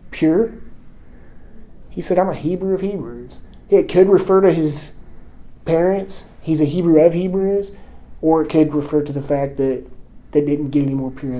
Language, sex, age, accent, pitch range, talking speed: English, male, 20-39, American, 140-175 Hz, 175 wpm